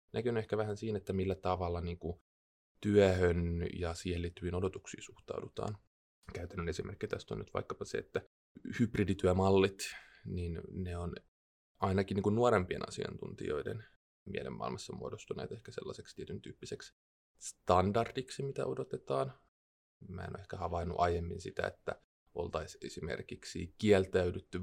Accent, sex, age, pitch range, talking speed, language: native, male, 20-39, 85-100 Hz, 125 wpm, Finnish